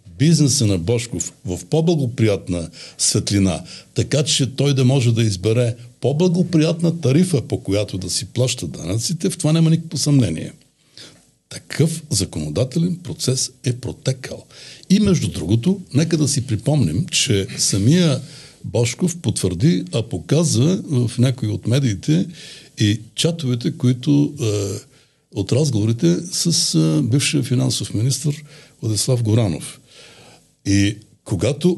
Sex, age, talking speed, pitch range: male, 60-79, 120 wpm, 110-155 Hz